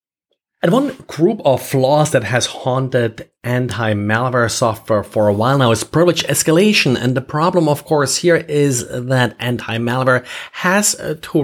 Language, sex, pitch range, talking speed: English, male, 120-155 Hz, 145 wpm